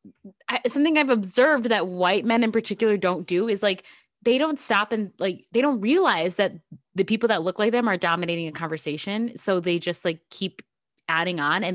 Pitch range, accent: 160-190 Hz, American